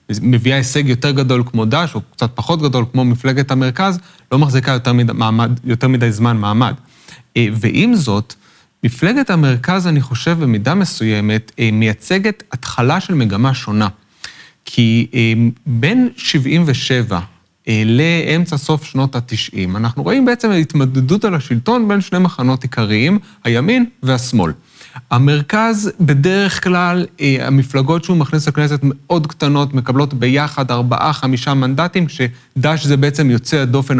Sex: male